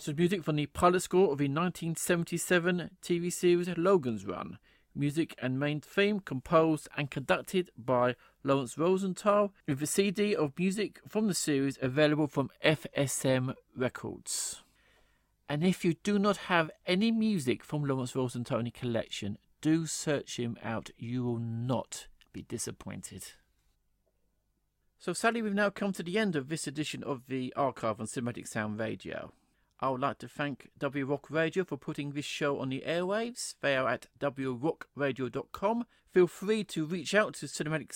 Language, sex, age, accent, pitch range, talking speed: English, male, 40-59, British, 135-180 Hz, 160 wpm